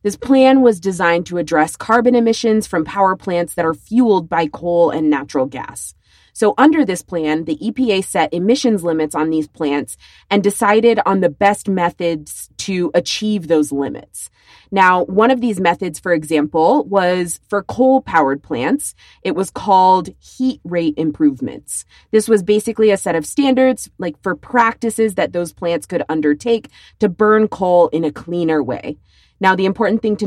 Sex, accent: female, American